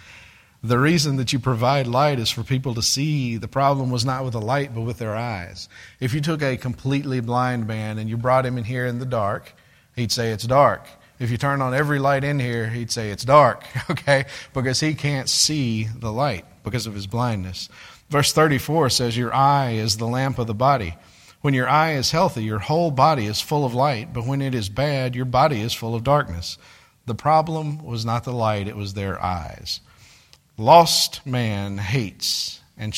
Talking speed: 205 wpm